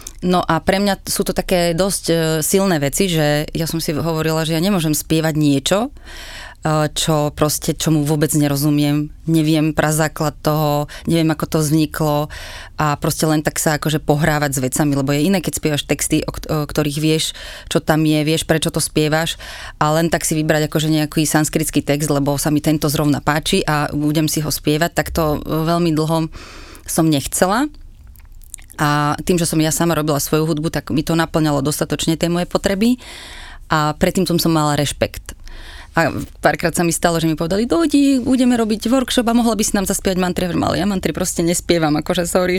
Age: 20-39